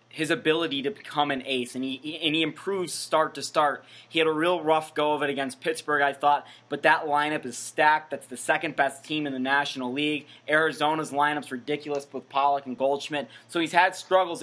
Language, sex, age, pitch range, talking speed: English, male, 20-39, 130-150 Hz, 210 wpm